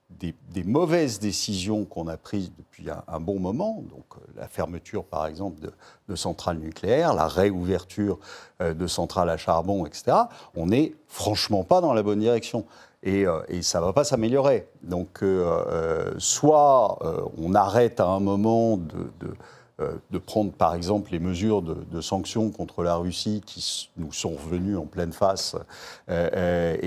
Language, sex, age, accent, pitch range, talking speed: French, male, 50-69, French, 90-115 Hz, 175 wpm